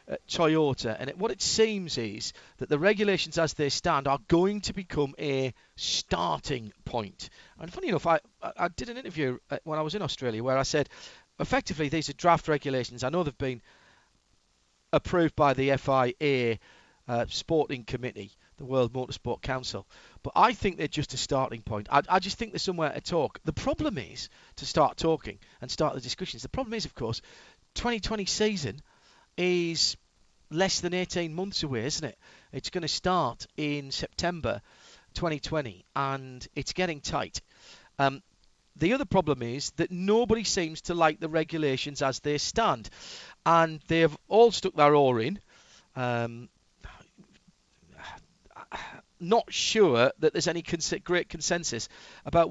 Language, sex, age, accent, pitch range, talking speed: English, male, 40-59, British, 130-175 Hz, 160 wpm